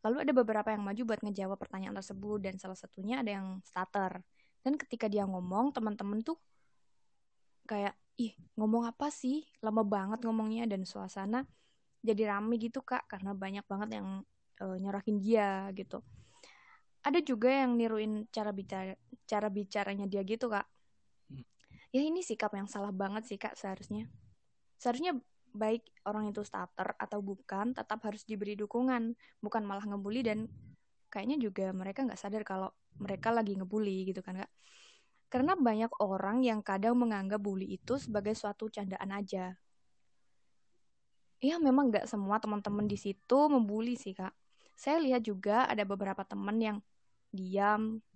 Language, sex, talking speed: Indonesian, female, 150 wpm